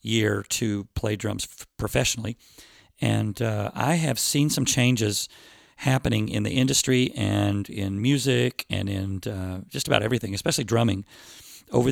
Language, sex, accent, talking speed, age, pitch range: English, male, American, 140 wpm, 40-59, 105-130 Hz